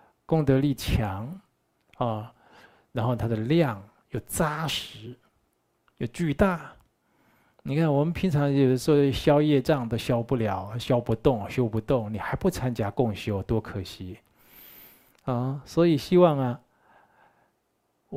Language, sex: Chinese, male